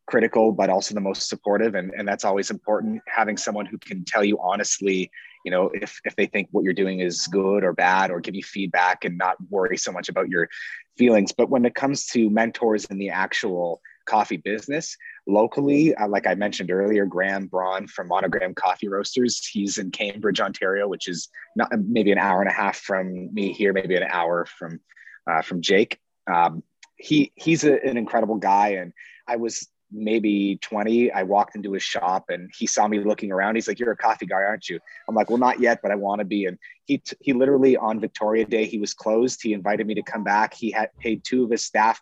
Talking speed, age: 220 wpm, 30-49